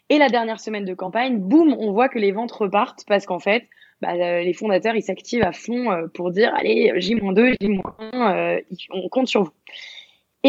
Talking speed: 215 wpm